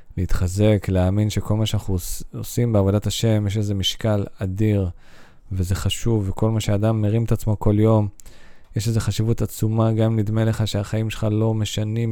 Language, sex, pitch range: Hebrew, male, 100-115 Hz